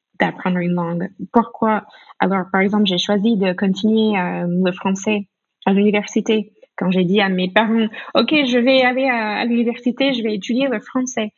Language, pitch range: French, 185-255 Hz